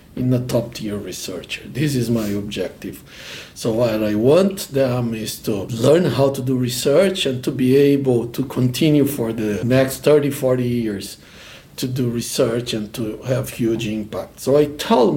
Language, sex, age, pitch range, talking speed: English, male, 60-79, 120-145 Hz, 175 wpm